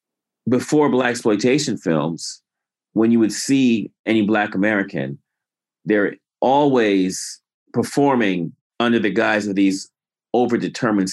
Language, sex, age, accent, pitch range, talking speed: English, male, 40-59, American, 95-125 Hz, 110 wpm